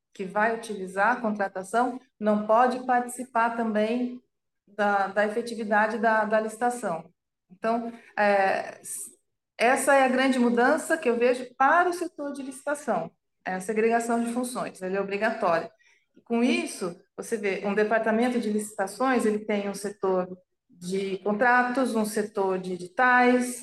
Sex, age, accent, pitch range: female, 40-59, Brazilian, 210-250 Hz